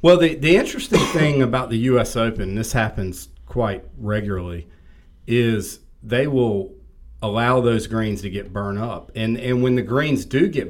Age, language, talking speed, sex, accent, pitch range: 40-59, English, 175 wpm, male, American, 95-130 Hz